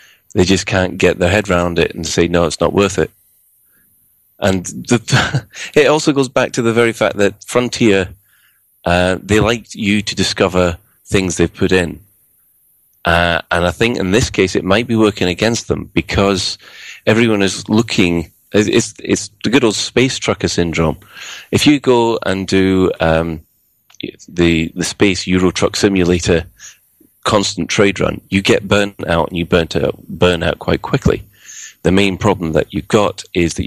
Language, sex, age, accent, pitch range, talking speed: English, male, 30-49, British, 85-105 Hz, 170 wpm